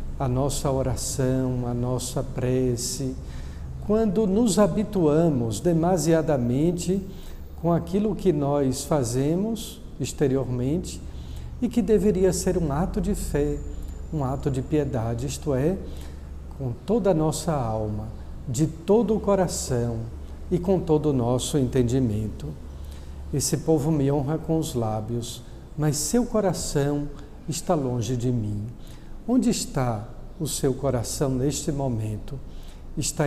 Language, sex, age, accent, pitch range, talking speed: Portuguese, male, 60-79, Brazilian, 120-180 Hz, 120 wpm